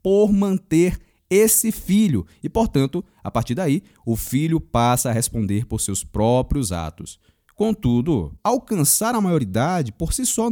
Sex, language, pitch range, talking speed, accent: male, Portuguese, 120-195 Hz, 145 wpm, Brazilian